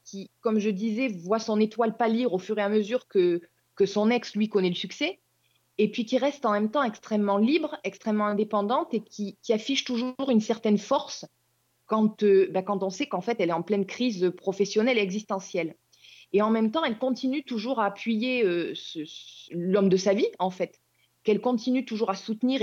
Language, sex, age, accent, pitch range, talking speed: French, female, 20-39, French, 205-265 Hz, 210 wpm